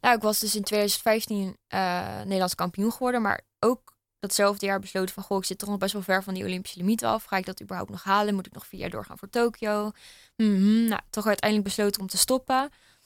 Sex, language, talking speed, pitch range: female, Dutch, 235 wpm, 190-215 Hz